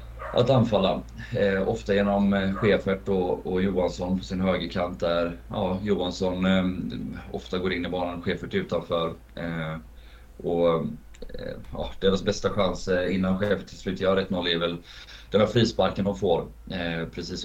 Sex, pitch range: male, 85-95 Hz